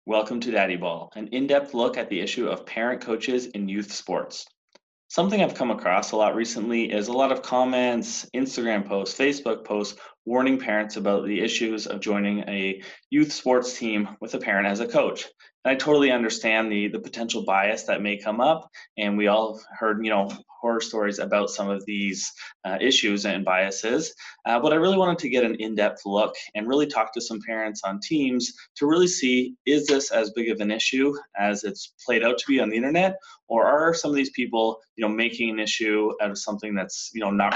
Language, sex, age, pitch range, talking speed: English, male, 20-39, 105-125 Hz, 215 wpm